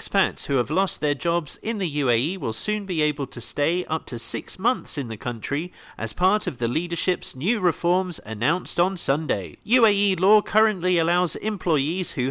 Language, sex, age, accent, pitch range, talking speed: English, male, 40-59, British, 140-190 Hz, 185 wpm